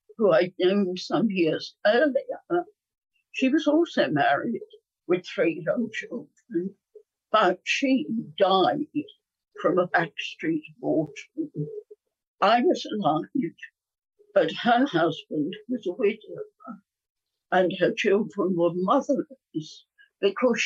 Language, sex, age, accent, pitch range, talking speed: English, female, 60-79, British, 190-320 Hz, 105 wpm